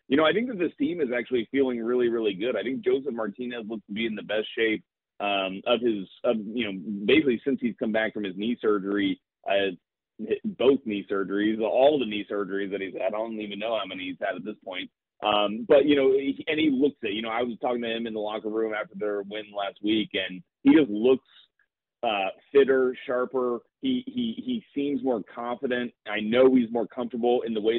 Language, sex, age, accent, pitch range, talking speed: English, male, 30-49, American, 110-135 Hz, 225 wpm